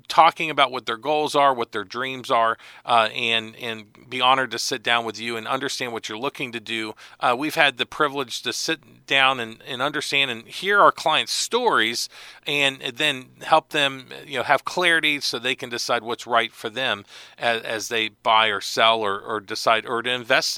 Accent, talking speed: American, 205 wpm